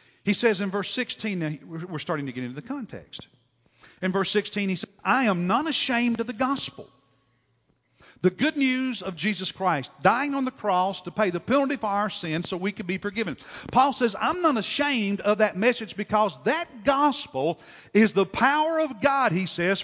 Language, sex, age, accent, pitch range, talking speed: English, male, 50-69, American, 145-225 Hz, 195 wpm